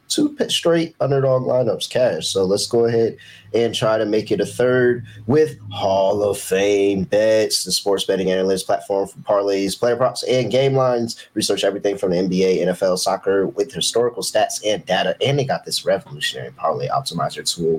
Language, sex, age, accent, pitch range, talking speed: English, male, 30-49, American, 100-135 Hz, 180 wpm